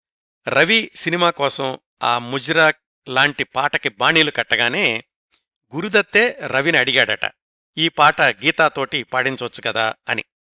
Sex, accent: male, native